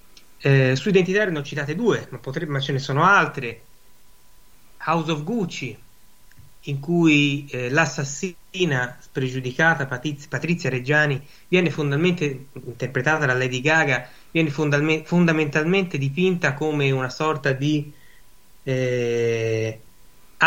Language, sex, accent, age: Italian, male, native, 30-49